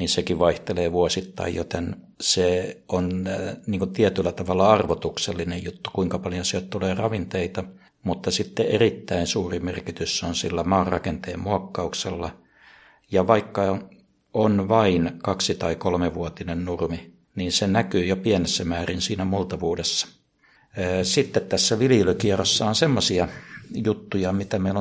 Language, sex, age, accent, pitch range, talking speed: Finnish, male, 60-79, native, 85-95 Hz, 125 wpm